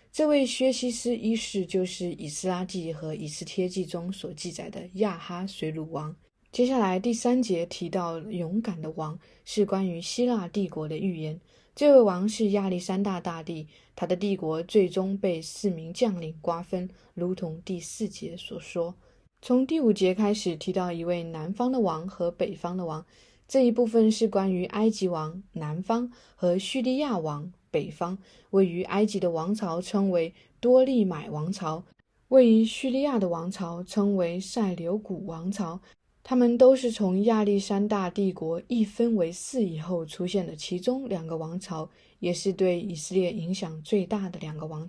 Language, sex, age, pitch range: Chinese, female, 20-39, 170-215 Hz